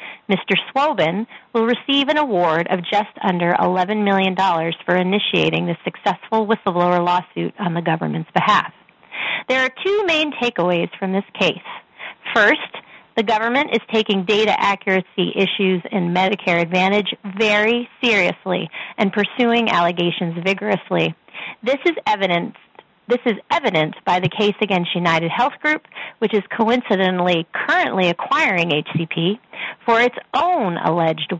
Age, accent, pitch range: 30-49, American, 170-225 Hz